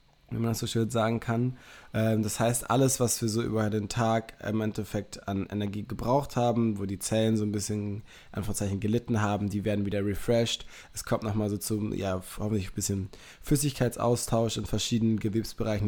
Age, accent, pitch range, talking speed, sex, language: 20-39, German, 105-115 Hz, 180 wpm, male, German